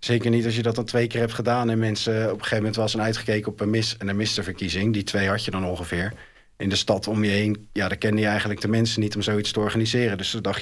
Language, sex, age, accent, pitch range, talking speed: Dutch, male, 40-59, Dutch, 95-110 Hz, 290 wpm